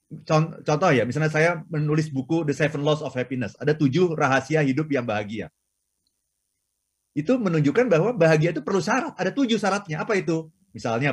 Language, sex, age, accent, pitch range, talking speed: Indonesian, male, 30-49, native, 135-175 Hz, 160 wpm